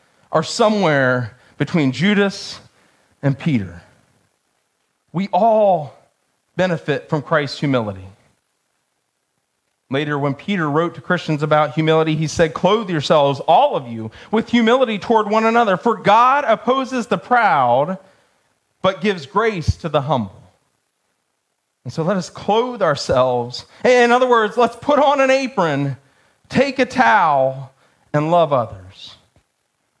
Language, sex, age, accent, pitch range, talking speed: English, male, 40-59, American, 155-235 Hz, 125 wpm